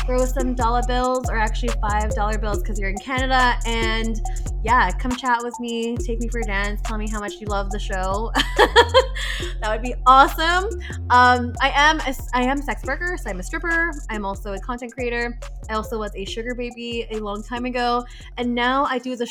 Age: 20-39